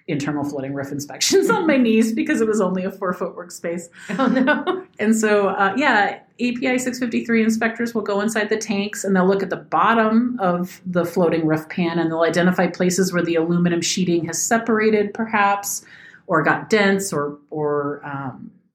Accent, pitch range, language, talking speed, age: American, 160-205 Hz, English, 185 wpm, 40-59